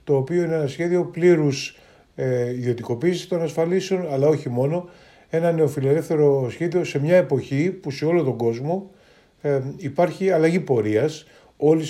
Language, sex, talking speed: Greek, male, 135 wpm